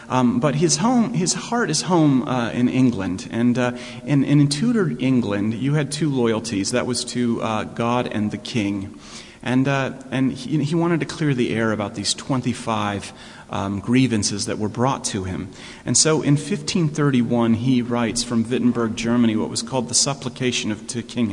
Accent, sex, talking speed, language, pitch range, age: American, male, 185 wpm, English, 110-130 Hz, 30-49